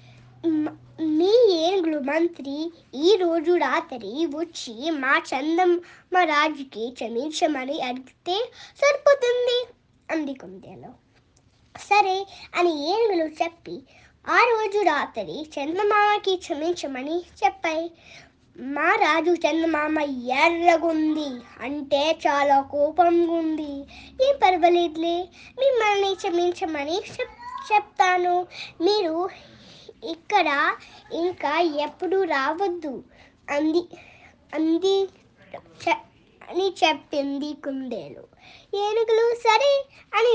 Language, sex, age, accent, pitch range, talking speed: Telugu, male, 20-39, native, 305-390 Hz, 75 wpm